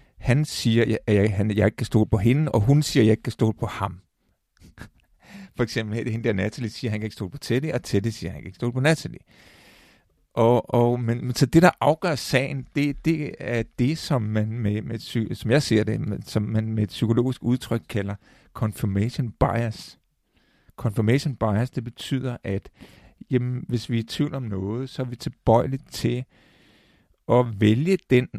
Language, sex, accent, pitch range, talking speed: Danish, male, native, 110-130 Hz, 205 wpm